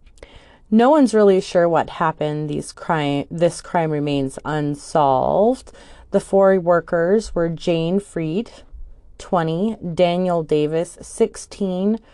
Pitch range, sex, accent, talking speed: 150-185 Hz, female, American, 100 wpm